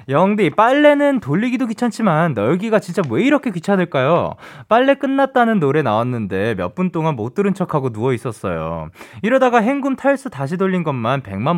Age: 20-39